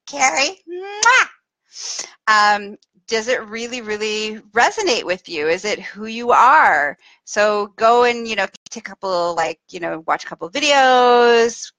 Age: 30-49